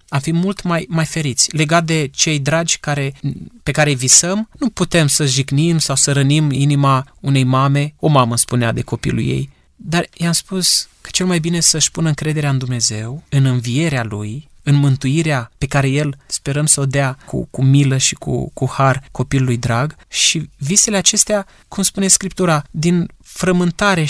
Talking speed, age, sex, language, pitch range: 180 wpm, 20-39, male, Romanian, 135-175 Hz